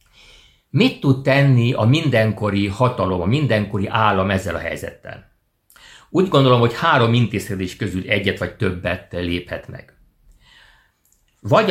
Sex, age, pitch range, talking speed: male, 60-79, 95-130 Hz, 125 wpm